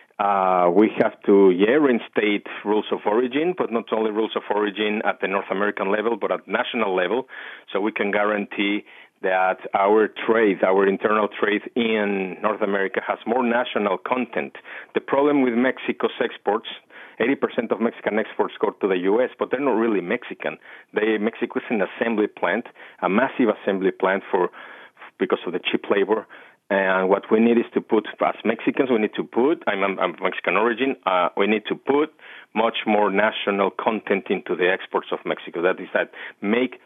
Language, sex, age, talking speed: English, male, 40-59, 175 wpm